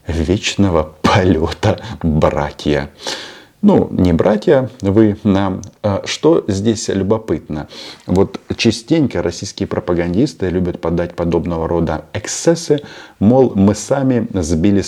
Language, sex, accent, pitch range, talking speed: Russian, male, native, 85-105 Hz, 100 wpm